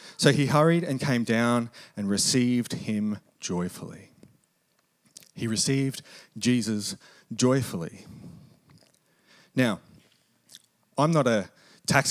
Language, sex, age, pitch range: English, male, 30-49, 115-155 Hz